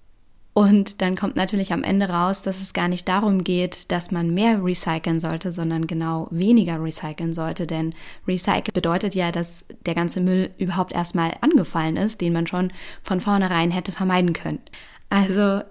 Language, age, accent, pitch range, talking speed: German, 20-39, German, 170-200 Hz, 170 wpm